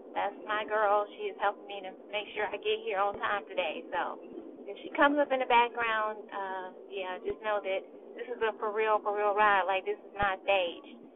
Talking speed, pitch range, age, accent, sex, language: 225 wpm, 205-270 Hz, 30-49, American, female, English